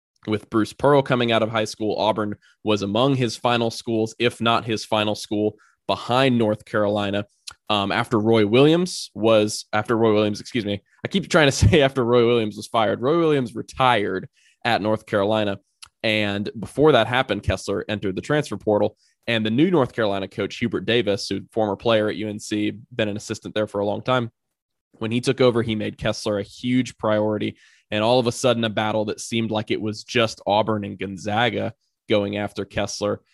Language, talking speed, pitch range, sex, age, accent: English, 195 wpm, 105-120 Hz, male, 20-39, American